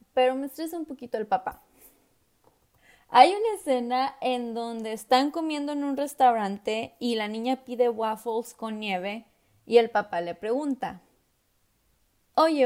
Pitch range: 230-275 Hz